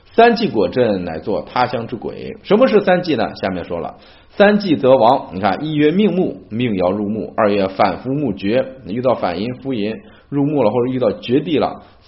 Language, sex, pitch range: Chinese, male, 95-150 Hz